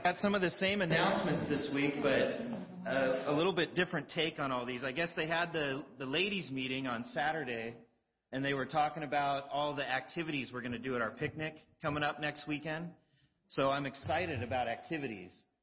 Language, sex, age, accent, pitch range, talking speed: English, male, 30-49, American, 130-155 Hz, 205 wpm